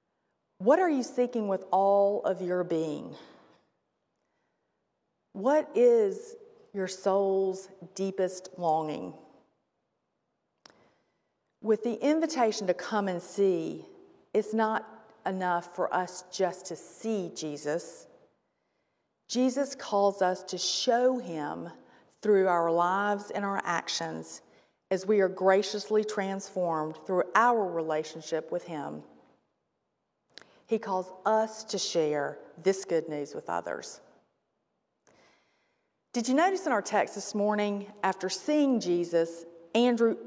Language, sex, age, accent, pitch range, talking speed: English, female, 40-59, American, 180-230 Hz, 110 wpm